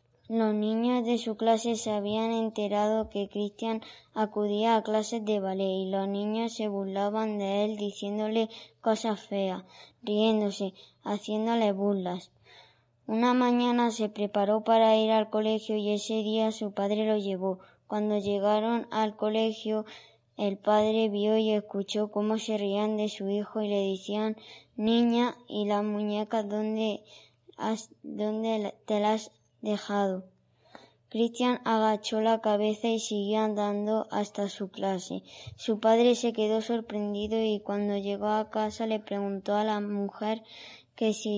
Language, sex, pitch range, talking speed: Spanish, male, 205-220 Hz, 140 wpm